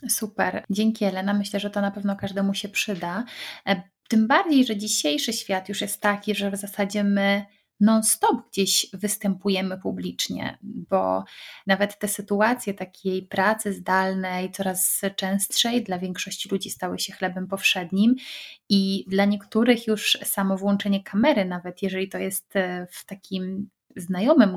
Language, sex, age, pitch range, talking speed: Polish, female, 30-49, 185-210 Hz, 140 wpm